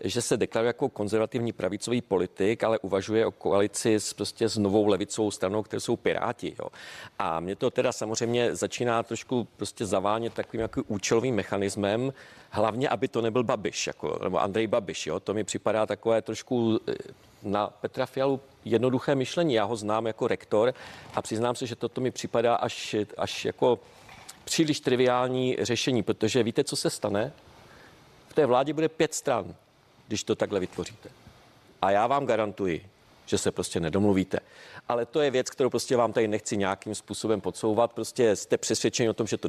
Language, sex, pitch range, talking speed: Czech, male, 105-130 Hz, 175 wpm